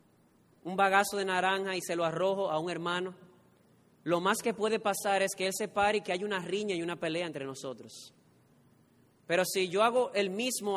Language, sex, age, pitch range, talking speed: Spanish, male, 30-49, 170-215 Hz, 205 wpm